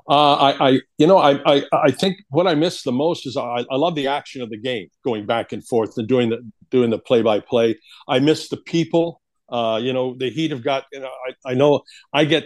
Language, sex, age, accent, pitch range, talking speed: English, male, 60-79, American, 135-185 Hz, 250 wpm